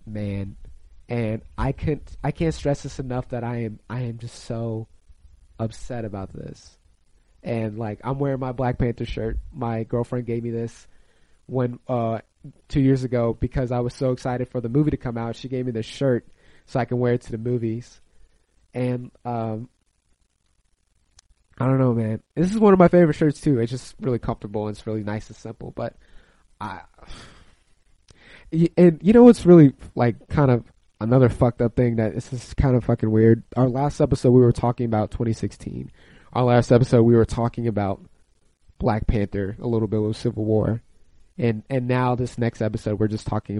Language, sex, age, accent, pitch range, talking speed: English, male, 30-49, American, 105-125 Hz, 190 wpm